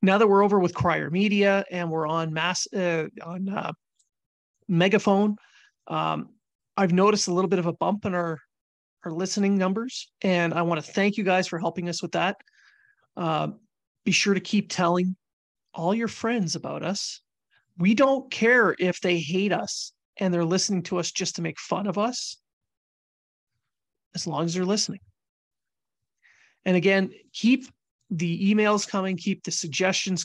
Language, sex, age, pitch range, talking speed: English, male, 30-49, 170-200 Hz, 165 wpm